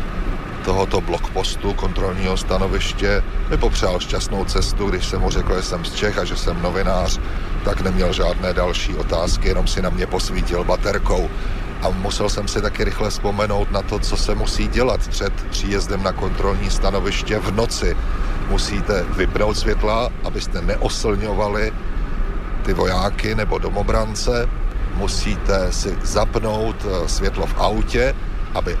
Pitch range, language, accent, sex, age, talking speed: 90-105 Hz, Czech, native, male, 40-59, 140 wpm